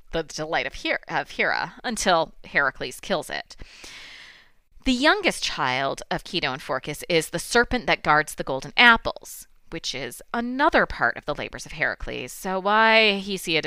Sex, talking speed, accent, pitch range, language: female, 160 wpm, American, 155-200 Hz, English